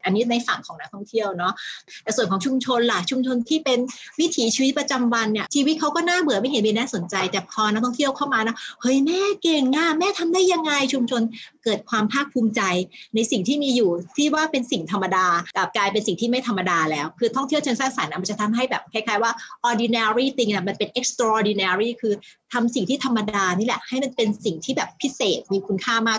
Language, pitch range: Thai, 205-255 Hz